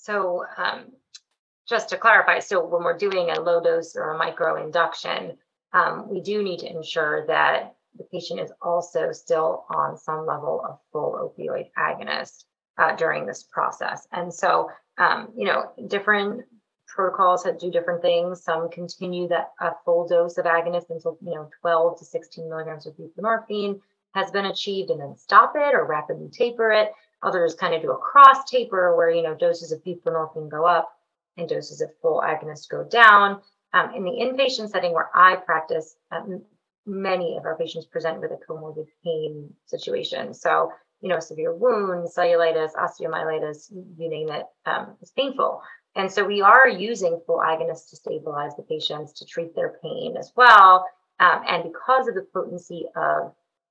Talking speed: 175 wpm